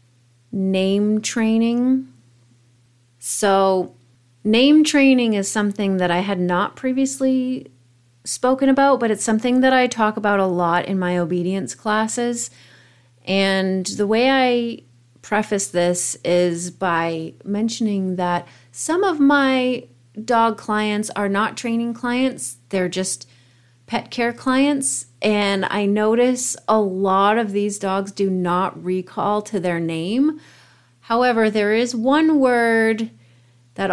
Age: 30-49